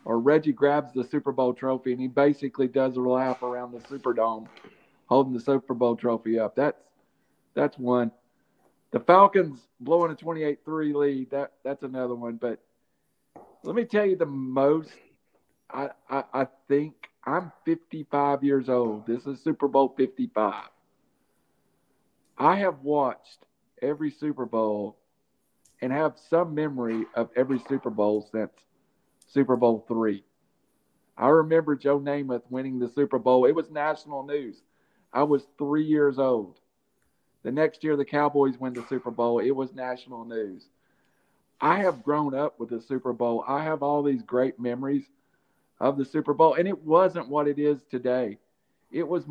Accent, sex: American, male